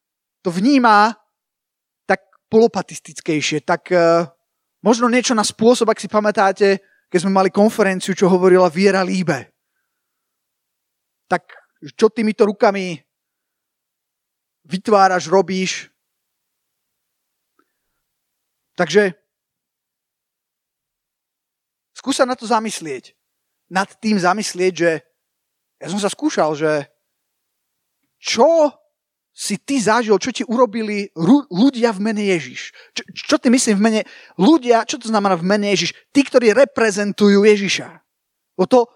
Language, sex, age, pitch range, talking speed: Slovak, male, 30-49, 180-225 Hz, 110 wpm